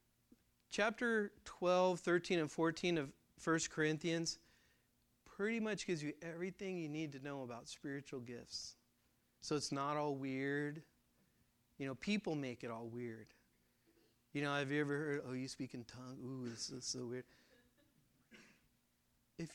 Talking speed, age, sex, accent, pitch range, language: 150 wpm, 40-59, male, American, 140-190 Hz, English